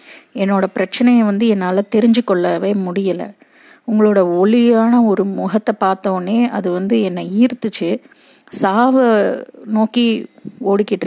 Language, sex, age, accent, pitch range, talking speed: Tamil, female, 30-49, native, 190-235 Hz, 105 wpm